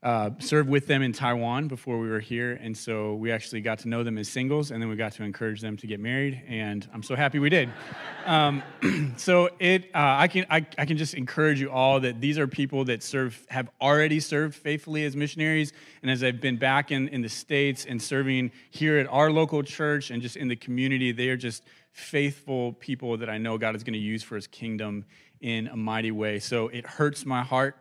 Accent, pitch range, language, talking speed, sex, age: American, 115-140 Hz, English, 230 wpm, male, 30-49